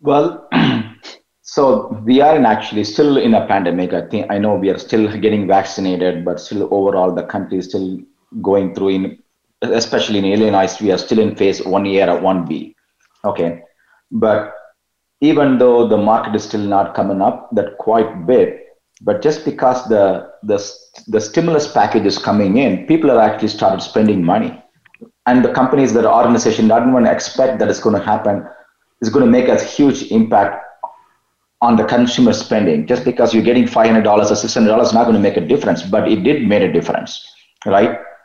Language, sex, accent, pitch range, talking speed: English, male, Indian, 100-140 Hz, 185 wpm